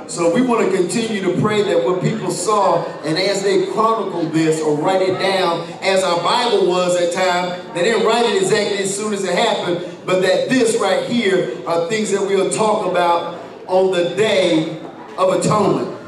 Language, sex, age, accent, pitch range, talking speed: English, male, 50-69, American, 175-225 Hz, 200 wpm